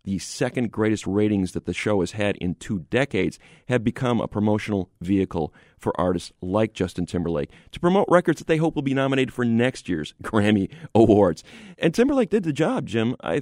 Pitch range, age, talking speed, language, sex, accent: 100-135 Hz, 40-59, 190 wpm, English, male, American